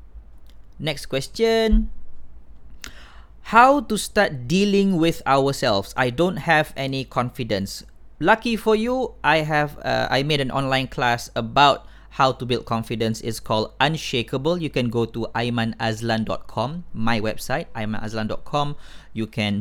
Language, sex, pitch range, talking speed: Malay, male, 110-145 Hz, 130 wpm